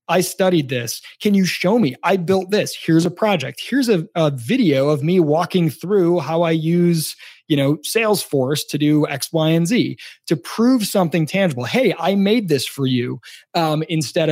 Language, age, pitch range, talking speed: English, 30-49, 140-175 Hz, 190 wpm